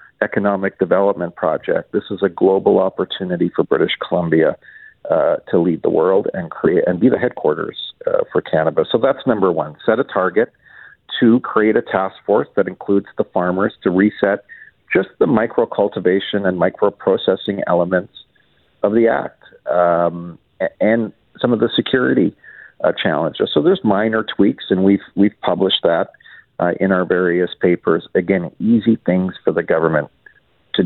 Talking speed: 160 wpm